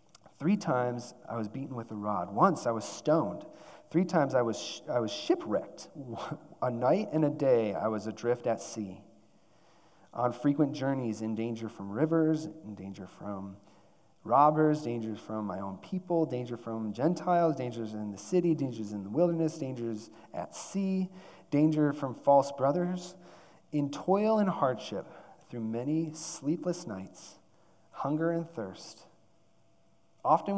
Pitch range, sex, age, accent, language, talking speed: 110-160 Hz, male, 30-49, American, English, 150 wpm